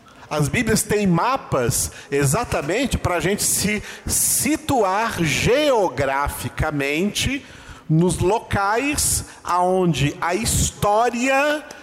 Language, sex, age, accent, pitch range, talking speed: Portuguese, male, 50-69, Brazilian, 130-180 Hz, 80 wpm